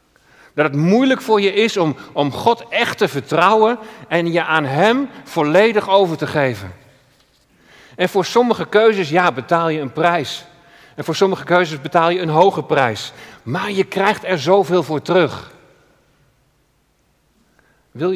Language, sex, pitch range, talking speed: Dutch, male, 150-195 Hz, 150 wpm